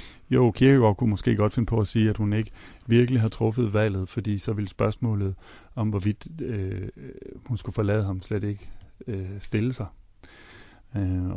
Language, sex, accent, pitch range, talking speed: Danish, male, native, 100-115 Hz, 175 wpm